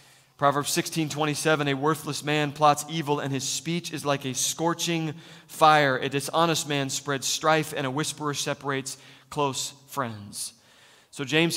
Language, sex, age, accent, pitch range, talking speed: English, male, 30-49, American, 135-170 Hz, 150 wpm